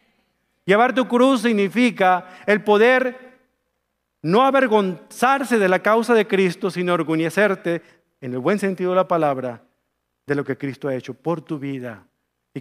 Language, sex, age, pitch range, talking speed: English, male, 40-59, 170-255 Hz, 150 wpm